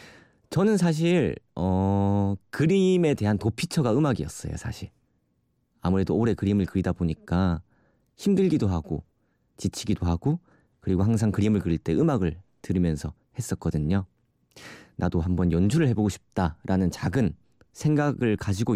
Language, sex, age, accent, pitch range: Korean, male, 30-49, native, 90-135 Hz